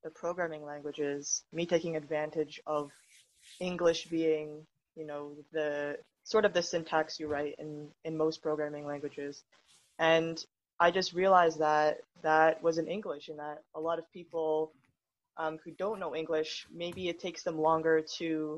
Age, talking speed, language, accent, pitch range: 20-39, 160 wpm, English, American, 150-170 Hz